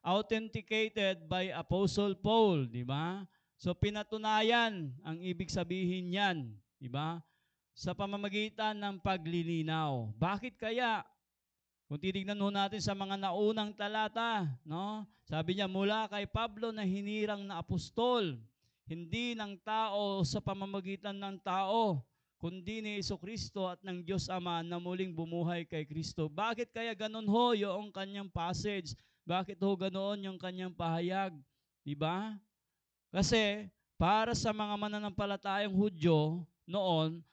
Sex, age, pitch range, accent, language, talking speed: male, 20-39, 165-205 Hz, native, Filipino, 125 wpm